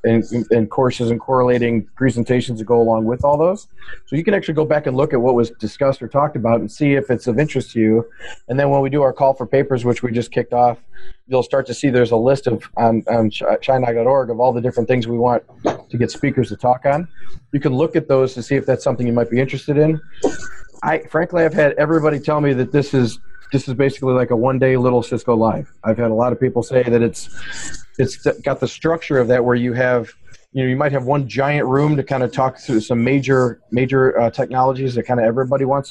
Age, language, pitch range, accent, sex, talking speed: 40-59, English, 120-140 Hz, American, male, 250 wpm